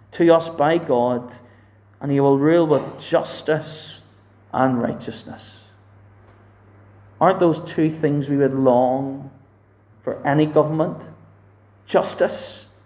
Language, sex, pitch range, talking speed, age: English, male, 100-155 Hz, 105 wpm, 40-59